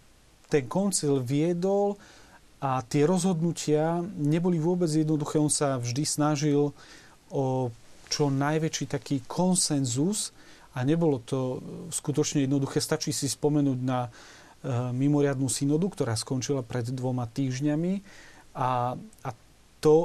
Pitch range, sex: 130-155 Hz, male